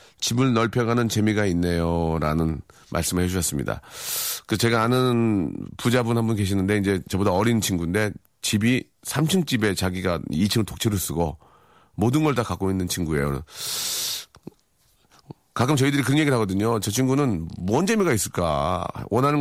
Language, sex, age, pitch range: Korean, male, 40-59, 100-165 Hz